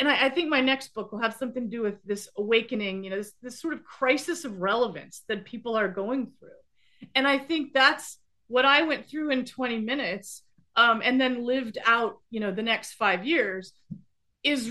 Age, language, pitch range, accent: 30-49, English, 220-295 Hz, American